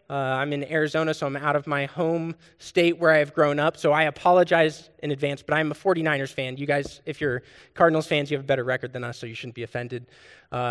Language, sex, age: English, male, 20-39